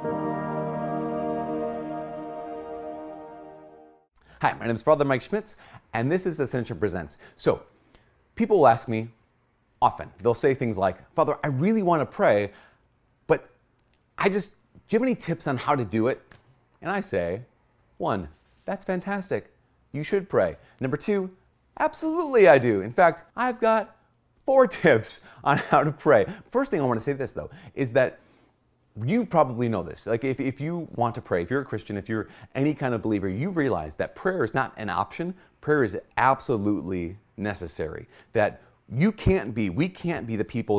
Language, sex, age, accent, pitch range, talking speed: English, male, 30-49, American, 105-155 Hz, 170 wpm